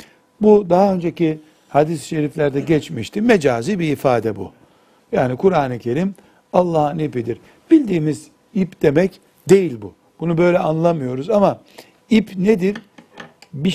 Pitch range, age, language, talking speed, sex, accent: 140-180 Hz, 60-79, Turkish, 120 wpm, male, native